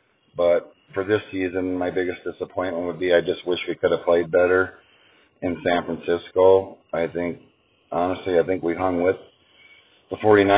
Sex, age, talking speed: male, 40-59, 165 wpm